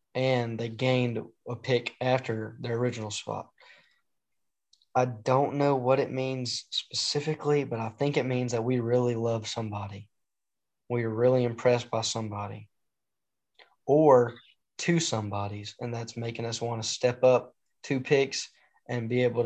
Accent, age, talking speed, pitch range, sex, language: American, 10-29, 150 wpm, 115-125 Hz, male, English